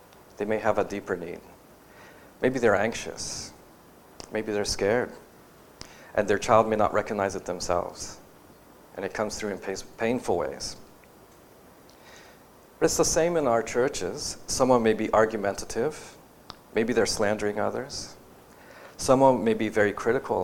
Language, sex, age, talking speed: English, male, 40-59, 135 wpm